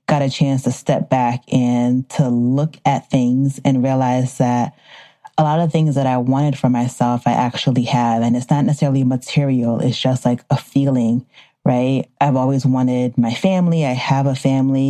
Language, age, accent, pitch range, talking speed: English, 30-49, American, 130-150 Hz, 185 wpm